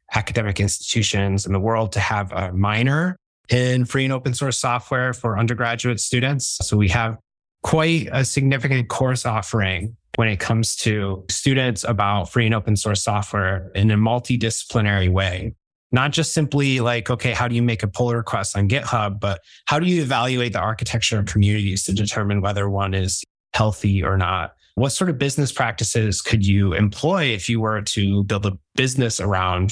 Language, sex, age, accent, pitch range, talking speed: English, male, 20-39, American, 100-125 Hz, 180 wpm